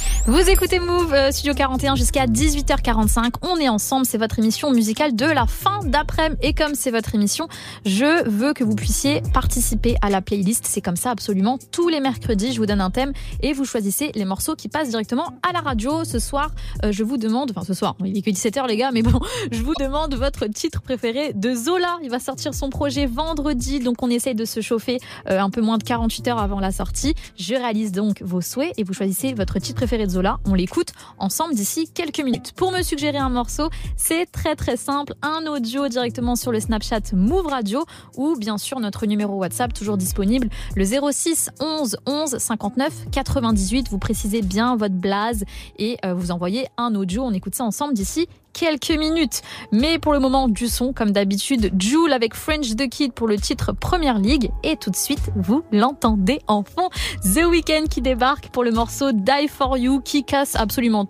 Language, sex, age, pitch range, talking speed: French, female, 20-39, 215-290 Hz, 205 wpm